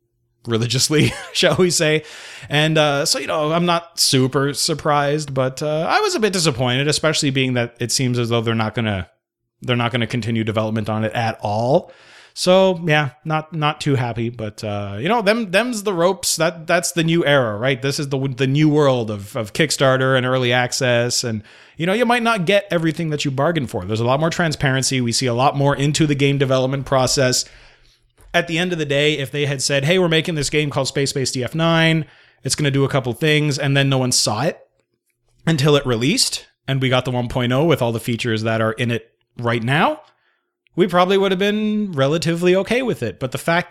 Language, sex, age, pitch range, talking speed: English, male, 30-49, 125-160 Hz, 220 wpm